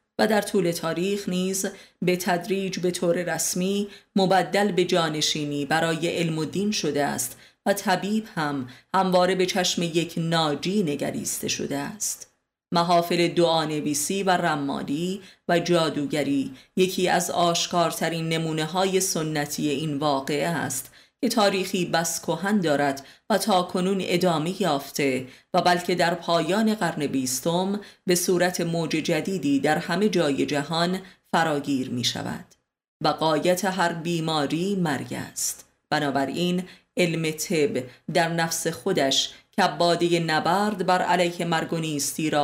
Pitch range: 155-185 Hz